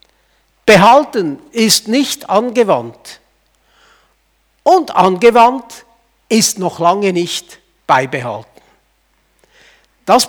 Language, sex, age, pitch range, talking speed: German, male, 60-79, 185-245 Hz, 70 wpm